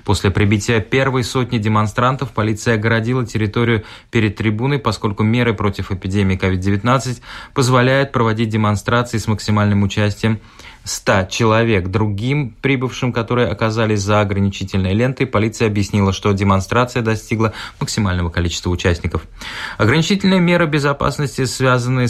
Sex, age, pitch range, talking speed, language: male, 20-39, 95-120 Hz, 115 wpm, Russian